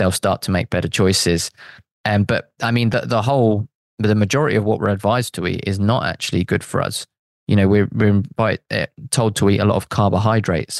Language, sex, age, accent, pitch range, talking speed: English, male, 20-39, British, 95-115 Hz, 230 wpm